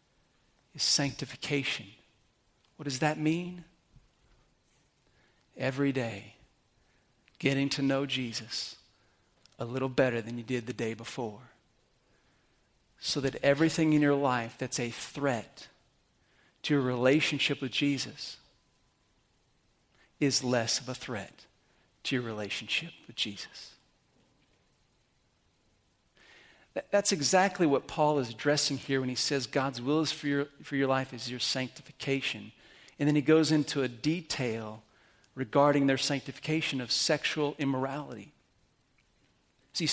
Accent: American